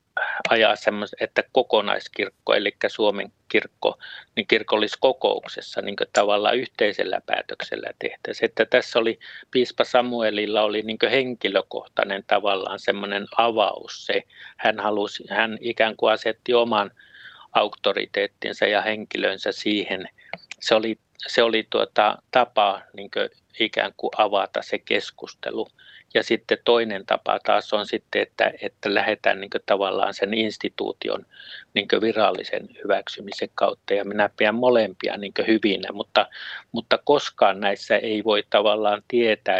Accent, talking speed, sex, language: native, 125 wpm, male, Finnish